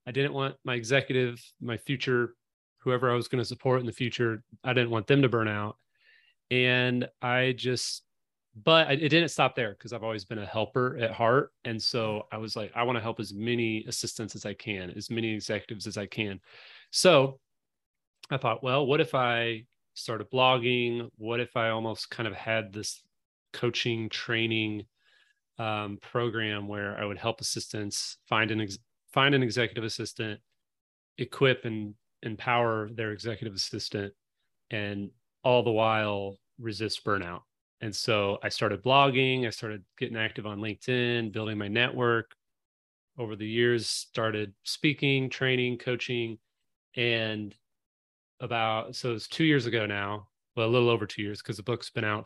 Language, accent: English, American